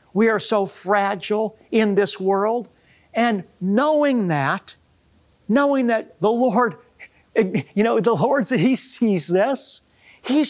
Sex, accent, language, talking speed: male, American, English, 125 wpm